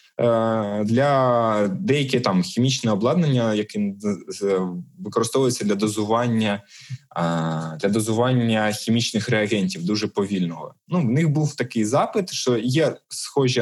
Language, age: Ukrainian, 20-39